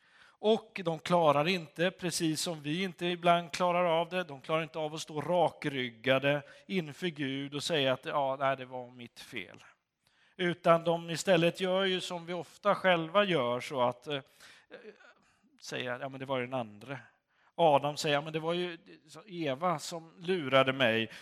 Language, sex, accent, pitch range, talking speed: Swedish, male, native, 125-175 Hz, 180 wpm